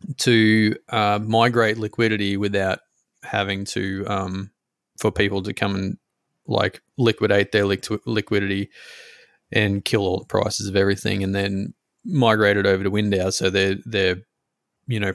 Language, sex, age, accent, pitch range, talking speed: English, male, 20-39, Australian, 100-110 Hz, 145 wpm